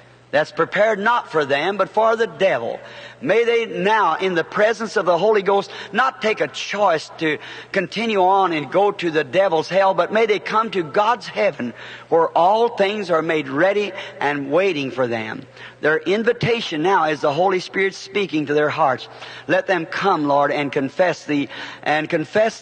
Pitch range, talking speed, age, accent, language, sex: 150-205 Hz, 190 wpm, 50-69, American, English, male